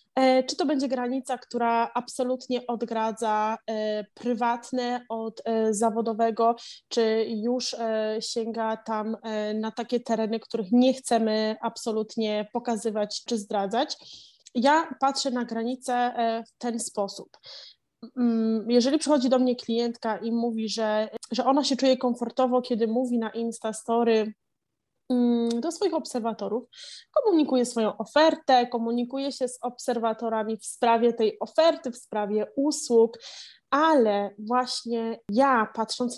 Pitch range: 220-250 Hz